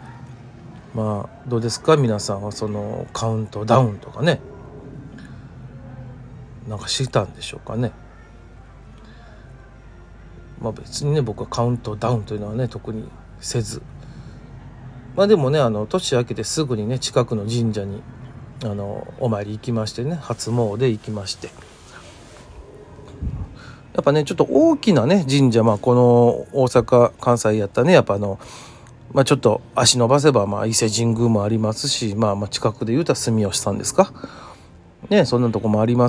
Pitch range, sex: 110-130 Hz, male